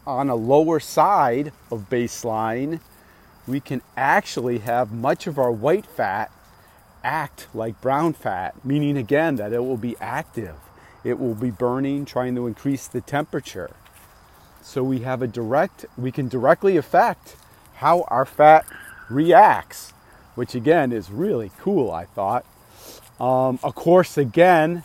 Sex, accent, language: male, American, English